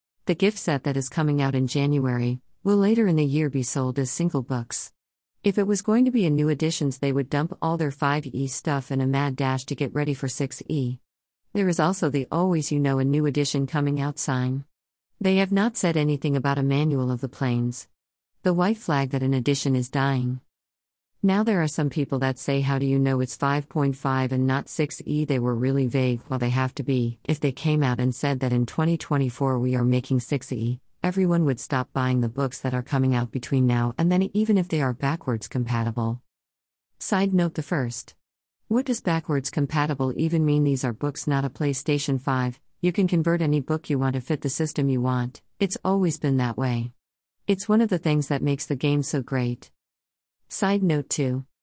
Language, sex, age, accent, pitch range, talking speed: English, female, 50-69, American, 130-160 Hz, 215 wpm